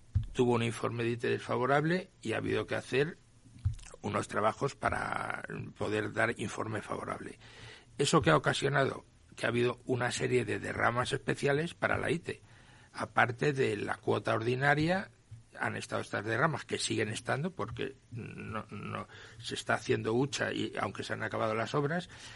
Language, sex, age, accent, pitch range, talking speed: Spanish, male, 60-79, Spanish, 110-135 Hz, 160 wpm